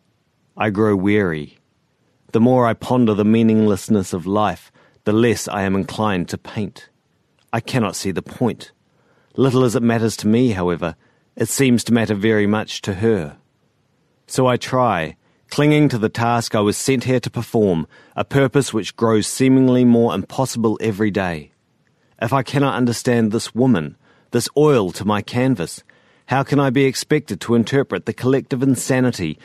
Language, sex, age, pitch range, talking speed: English, male, 40-59, 100-125 Hz, 165 wpm